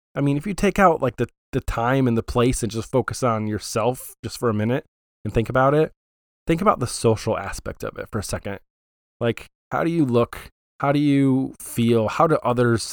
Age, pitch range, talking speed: 20-39, 105-125 Hz, 225 wpm